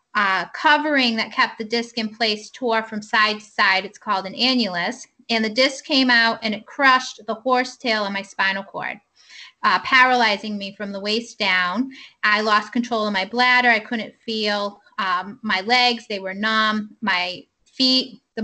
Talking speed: 190 wpm